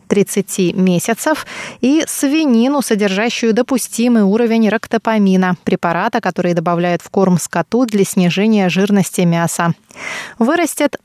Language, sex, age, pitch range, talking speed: Russian, female, 20-39, 185-235 Hz, 105 wpm